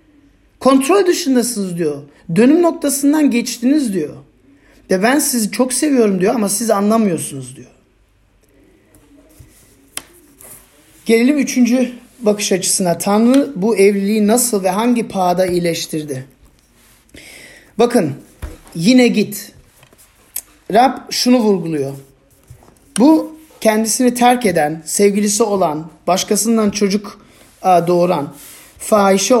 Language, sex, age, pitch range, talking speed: Turkish, male, 40-59, 165-245 Hz, 90 wpm